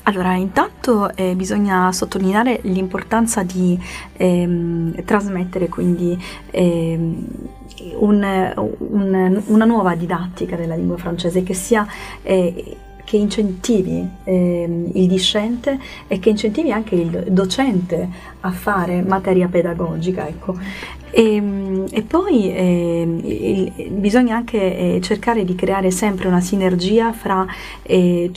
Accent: native